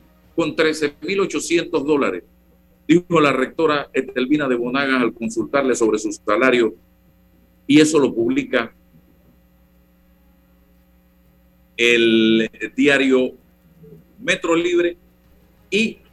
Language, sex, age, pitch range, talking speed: Spanish, male, 50-69, 115-165 Hz, 85 wpm